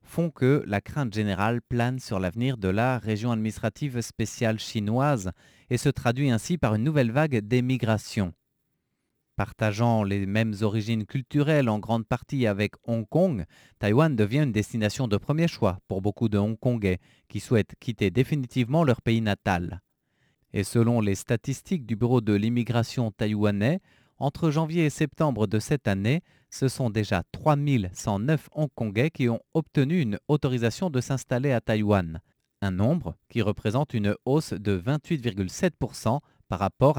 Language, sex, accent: French, male, French